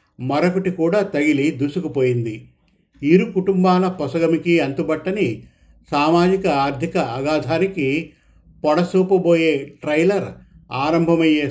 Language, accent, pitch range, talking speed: Telugu, native, 135-175 Hz, 75 wpm